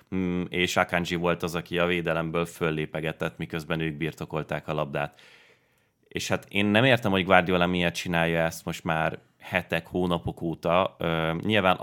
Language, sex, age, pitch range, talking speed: Hungarian, male, 30-49, 85-95 Hz, 150 wpm